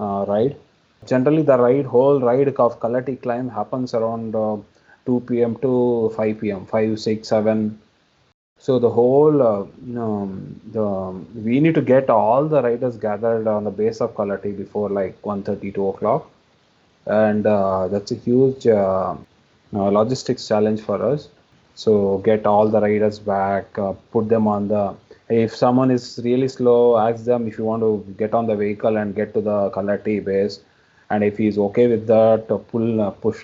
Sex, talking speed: male, 175 wpm